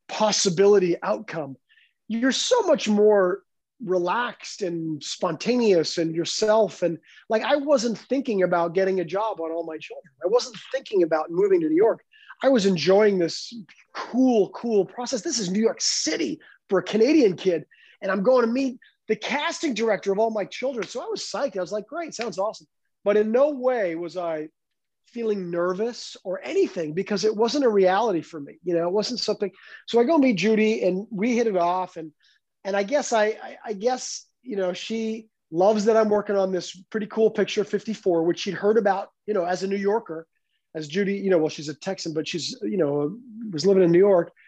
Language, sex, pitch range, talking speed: English, male, 180-235 Hz, 205 wpm